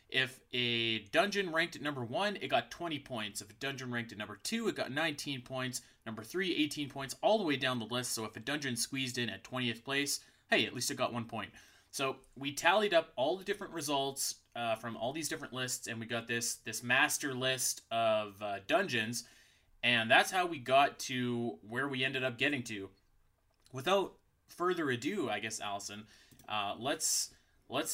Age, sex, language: 20-39, male, English